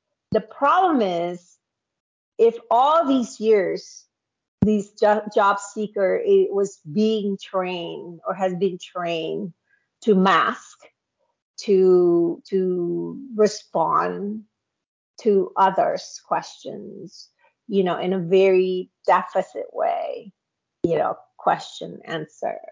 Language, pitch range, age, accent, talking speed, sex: English, 190-260 Hz, 40-59, American, 100 wpm, female